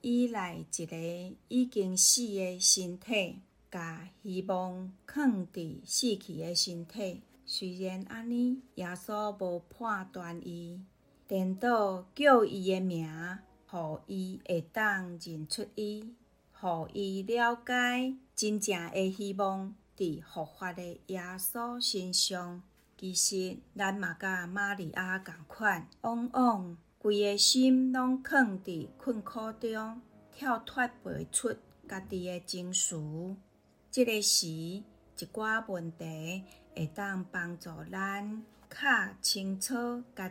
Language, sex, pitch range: Chinese, female, 180-220 Hz